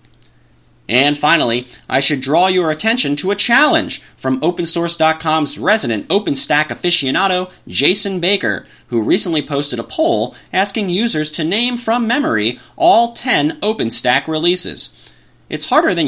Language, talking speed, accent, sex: English, 130 wpm, American, male